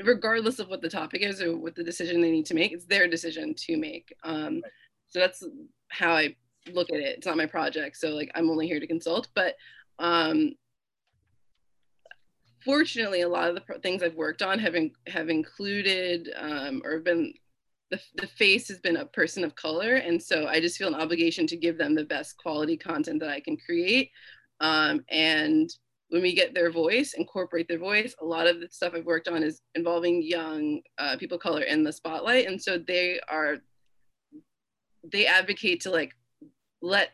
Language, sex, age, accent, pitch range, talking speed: English, female, 20-39, American, 160-250 Hz, 195 wpm